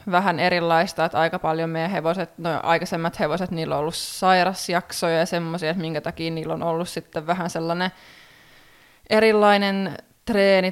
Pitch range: 165-190 Hz